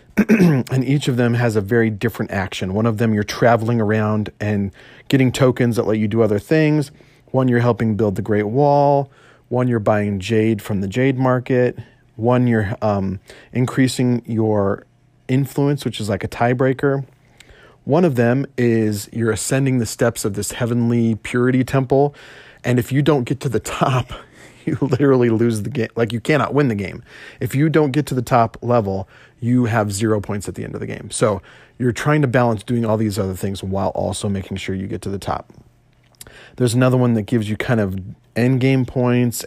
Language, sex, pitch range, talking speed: English, male, 105-130 Hz, 200 wpm